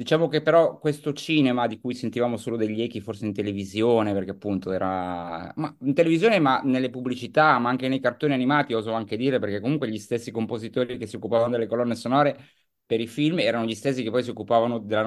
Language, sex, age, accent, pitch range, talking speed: Italian, male, 30-49, native, 105-135 Hz, 210 wpm